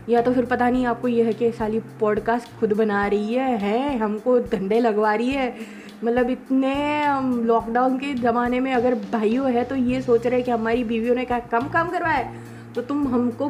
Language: Hindi